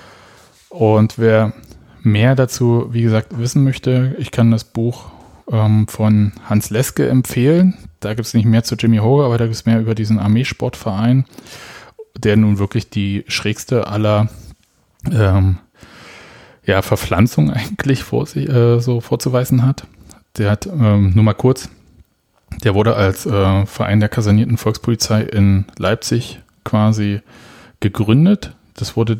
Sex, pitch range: male, 105-120 Hz